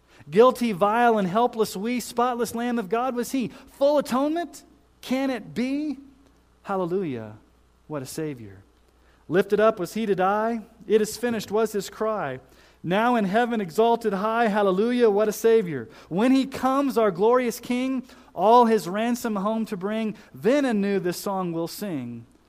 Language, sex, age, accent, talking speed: English, male, 40-59, American, 155 wpm